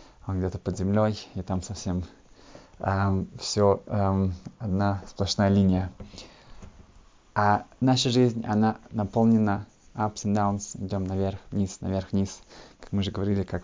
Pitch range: 100-115 Hz